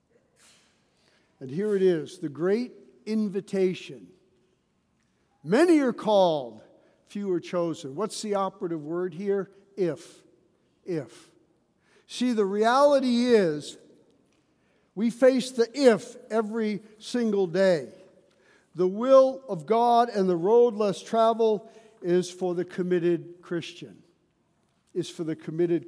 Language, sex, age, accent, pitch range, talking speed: English, male, 60-79, American, 170-210 Hz, 115 wpm